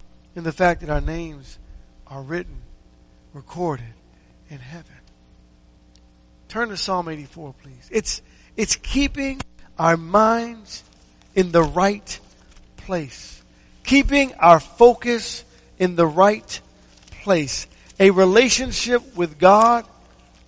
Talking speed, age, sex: 105 wpm, 50-69, male